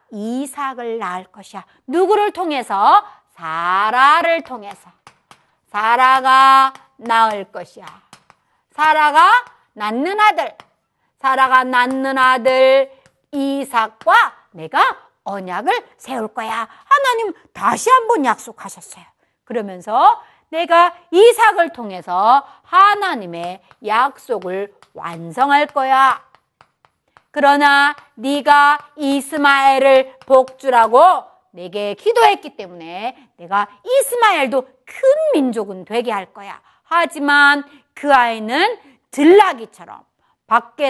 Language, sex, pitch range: Korean, female, 230-365 Hz